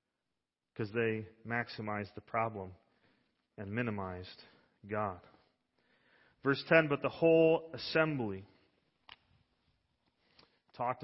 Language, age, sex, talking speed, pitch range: English, 40-59, male, 80 wpm, 110-155 Hz